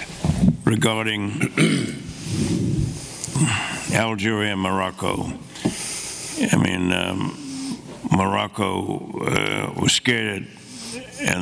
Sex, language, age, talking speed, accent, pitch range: male, English, 60-79, 60 wpm, American, 95-120 Hz